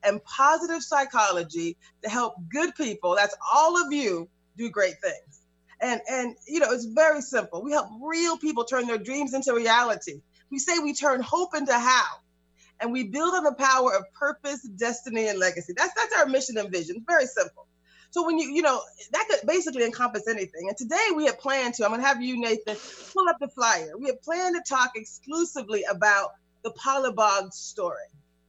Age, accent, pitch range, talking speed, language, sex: 30-49, American, 210-285 Hz, 190 wpm, English, female